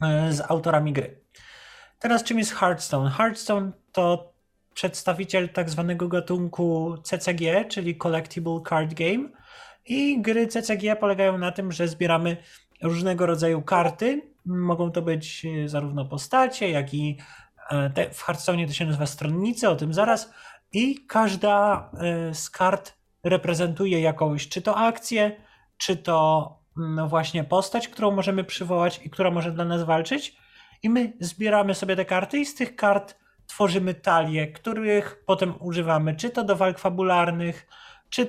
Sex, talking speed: male, 140 wpm